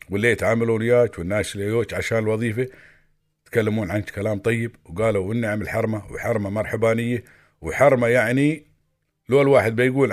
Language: Arabic